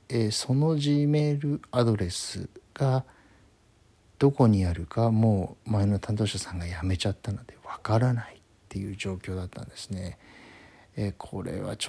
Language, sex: Japanese, male